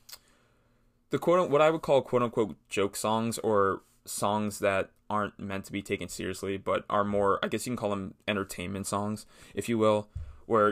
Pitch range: 100-120 Hz